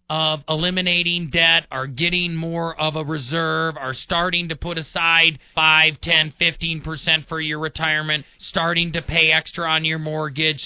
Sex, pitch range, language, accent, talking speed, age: male, 145-180 Hz, English, American, 150 wpm, 40-59